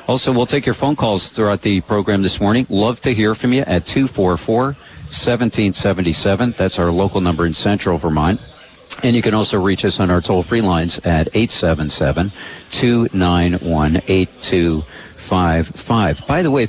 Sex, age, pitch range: male, 50-69, 85-110 Hz